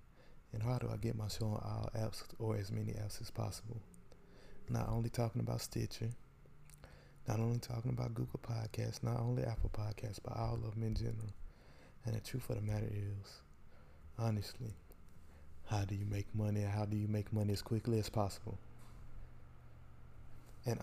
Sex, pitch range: male, 105-120 Hz